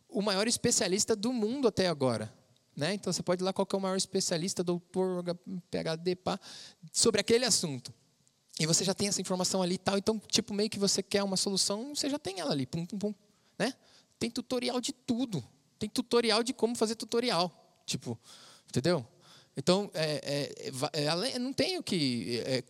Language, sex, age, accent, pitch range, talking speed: Portuguese, male, 20-39, Brazilian, 140-200 Hz, 195 wpm